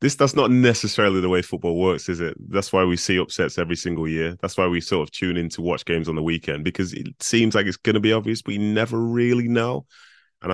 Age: 20-39